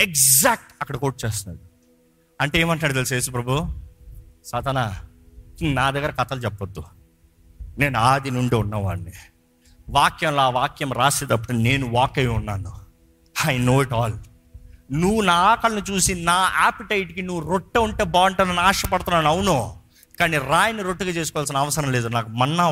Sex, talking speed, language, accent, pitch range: male, 135 wpm, Telugu, native, 105-165 Hz